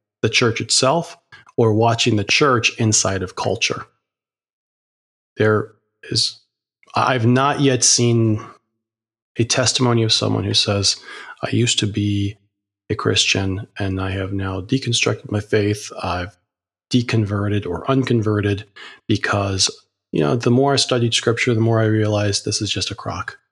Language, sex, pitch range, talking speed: English, male, 100-120 Hz, 145 wpm